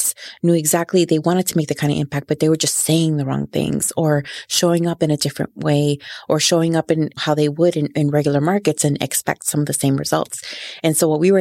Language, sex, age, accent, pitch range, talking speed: English, female, 30-49, American, 145-165 Hz, 250 wpm